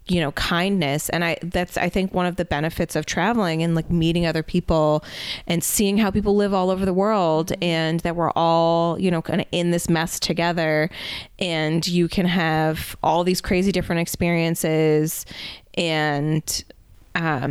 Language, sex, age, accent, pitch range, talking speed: English, female, 20-39, American, 155-180 Hz, 170 wpm